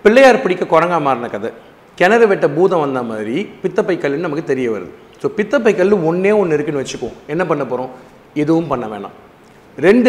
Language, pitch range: Tamil, 145-210 Hz